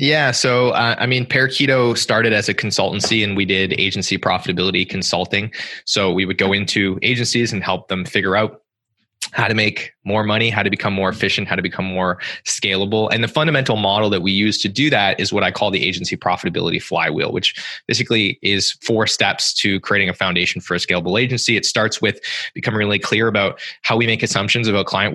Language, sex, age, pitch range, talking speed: English, male, 20-39, 95-115 Hz, 210 wpm